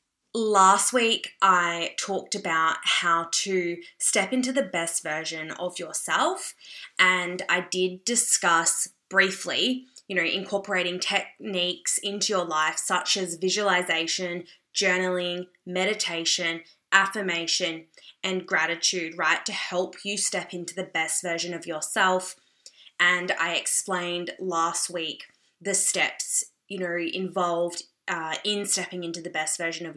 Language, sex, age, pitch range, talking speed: English, female, 20-39, 165-190 Hz, 125 wpm